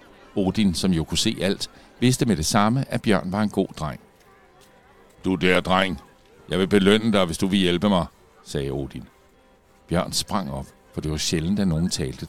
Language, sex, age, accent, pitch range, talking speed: Danish, male, 60-79, native, 80-110 Hz, 195 wpm